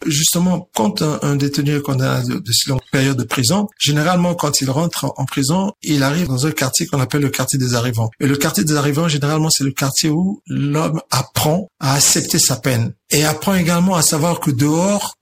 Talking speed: 215 wpm